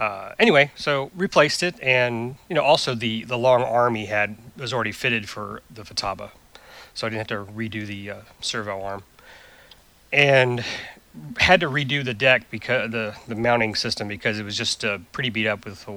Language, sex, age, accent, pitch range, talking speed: English, male, 30-49, American, 105-135 Hz, 195 wpm